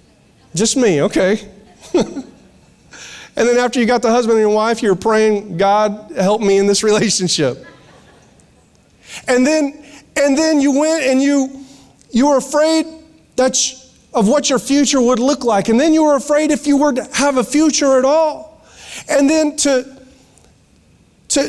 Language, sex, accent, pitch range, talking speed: English, male, American, 220-280 Hz, 165 wpm